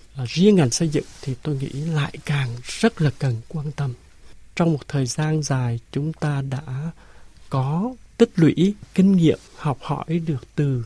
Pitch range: 135-160 Hz